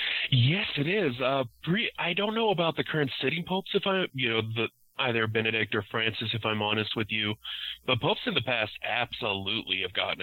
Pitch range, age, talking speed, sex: 95-110 Hz, 30-49, 210 wpm, male